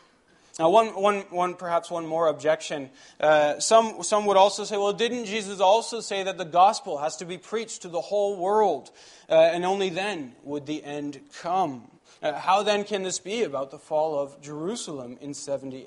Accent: American